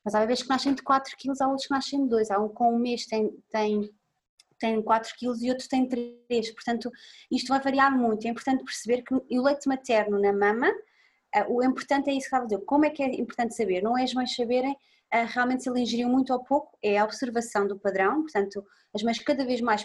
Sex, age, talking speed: female, 20-39, 225 wpm